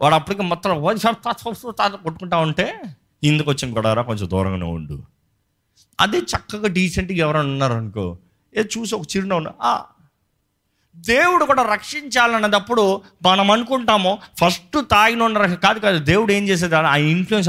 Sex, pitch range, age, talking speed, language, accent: male, 115-185 Hz, 30-49, 125 wpm, Telugu, native